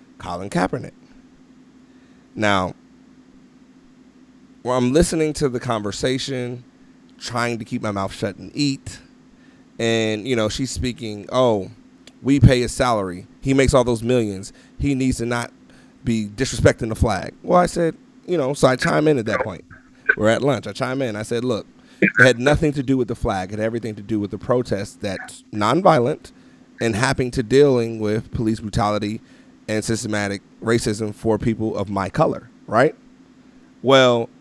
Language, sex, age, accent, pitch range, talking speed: English, male, 30-49, American, 110-165 Hz, 165 wpm